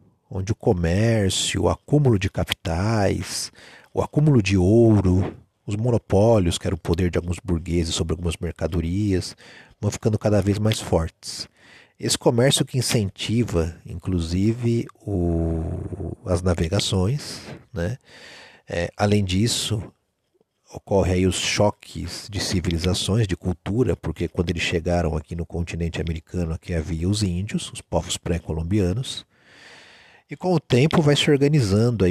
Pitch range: 90-115 Hz